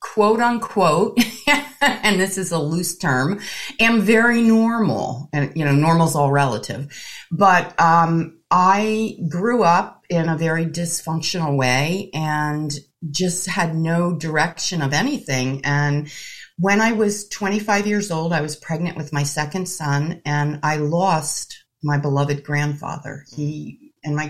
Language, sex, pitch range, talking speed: English, female, 145-185 Hz, 145 wpm